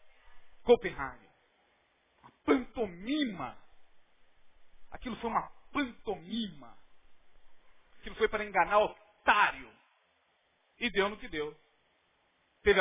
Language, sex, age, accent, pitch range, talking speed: Portuguese, male, 40-59, Brazilian, 155-255 Hz, 90 wpm